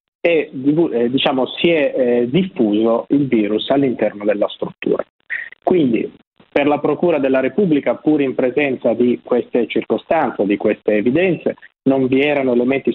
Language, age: Italian, 30-49